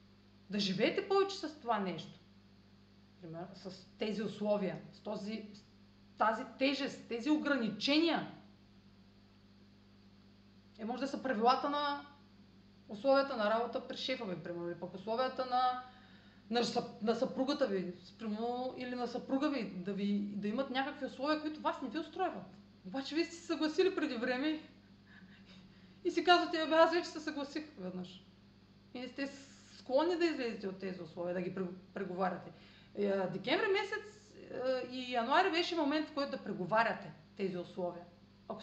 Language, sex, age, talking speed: Bulgarian, female, 30-49, 150 wpm